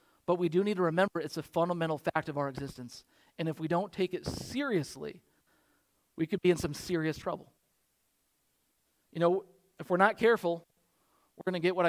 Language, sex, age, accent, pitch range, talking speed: English, male, 40-59, American, 165-215 Hz, 190 wpm